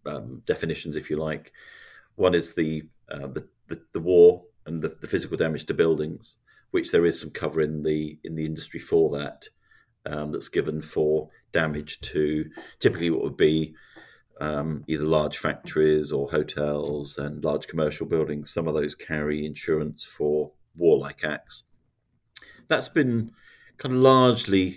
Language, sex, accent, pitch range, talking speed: English, male, British, 75-85 Hz, 155 wpm